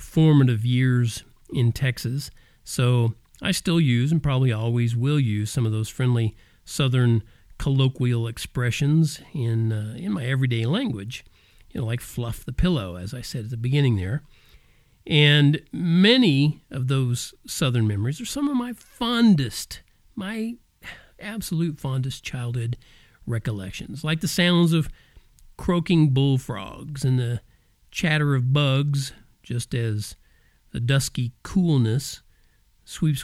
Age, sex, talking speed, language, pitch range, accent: 50-69, male, 130 wpm, English, 115-155 Hz, American